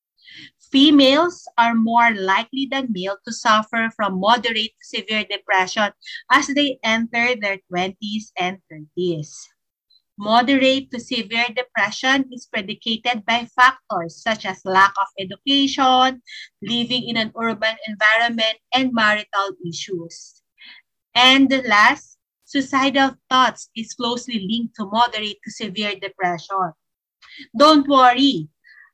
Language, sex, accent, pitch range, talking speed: Filipino, female, native, 205-255 Hz, 115 wpm